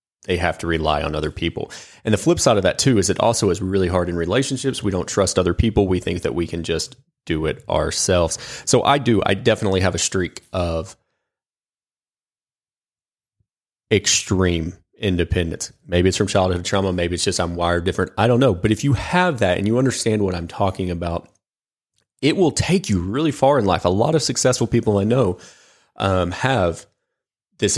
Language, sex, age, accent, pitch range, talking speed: English, male, 30-49, American, 85-105 Hz, 195 wpm